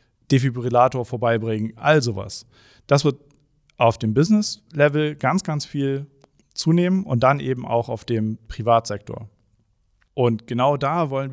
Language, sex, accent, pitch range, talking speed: German, male, German, 115-135 Hz, 125 wpm